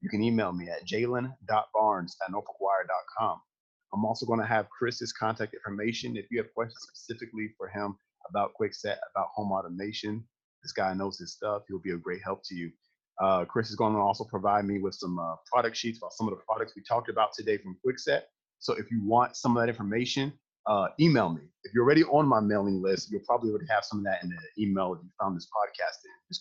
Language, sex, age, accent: English, male, 30-49, American